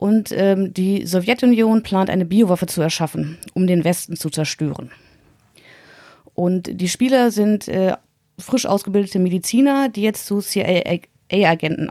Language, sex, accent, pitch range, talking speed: German, female, German, 175-210 Hz, 130 wpm